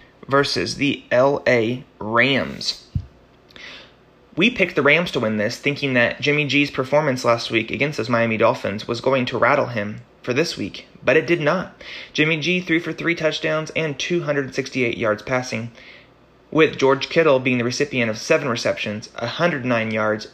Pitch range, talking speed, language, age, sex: 120-150 Hz, 160 wpm, English, 30-49, male